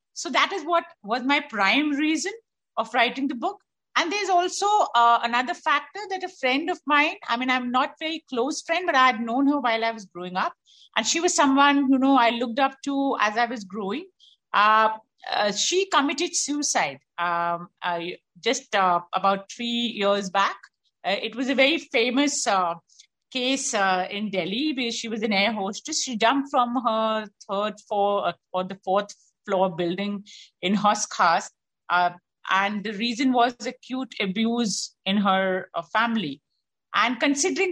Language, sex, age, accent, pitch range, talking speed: Hindi, female, 50-69, native, 205-285 Hz, 180 wpm